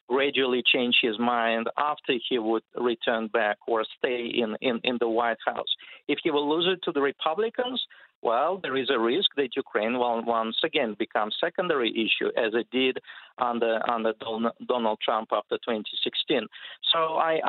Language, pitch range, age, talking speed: English, 115-145 Hz, 50-69, 170 wpm